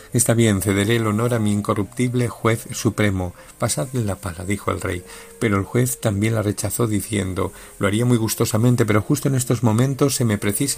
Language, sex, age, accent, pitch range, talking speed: Spanish, male, 50-69, Spanish, 100-125 Hz, 195 wpm